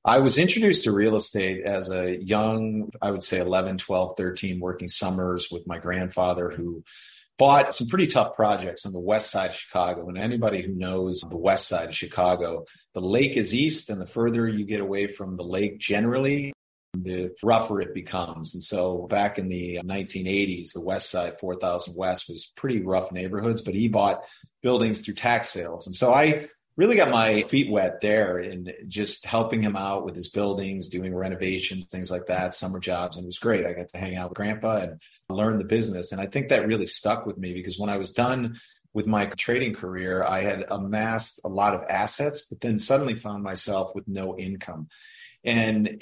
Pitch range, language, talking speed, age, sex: 90-110 Hz, English, 200 wpm, 40-59, male